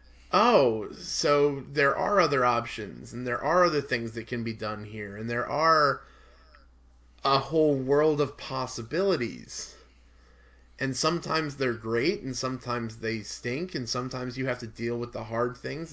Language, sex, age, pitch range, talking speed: English, male, 20-39, 115-145 Hz, 160 wpm